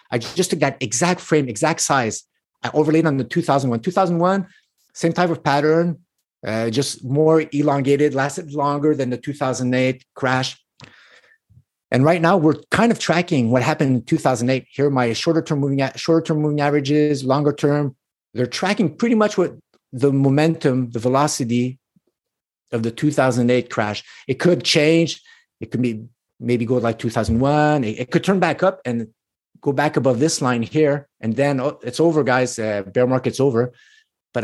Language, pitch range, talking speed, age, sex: English, 125-155 Hz, 190 wpm, 50-69, male